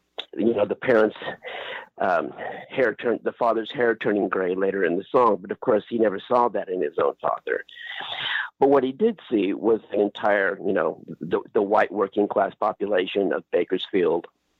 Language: English